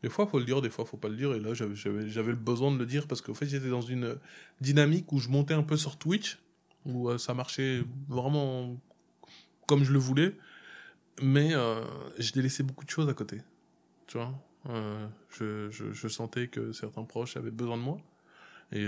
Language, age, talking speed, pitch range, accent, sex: French, 20-39, 225 wpm, 105-135 Hz, French, male